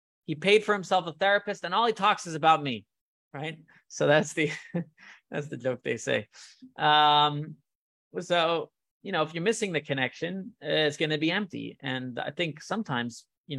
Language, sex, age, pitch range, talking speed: English, male, 20-39, 135-170 Hz, 185 wpm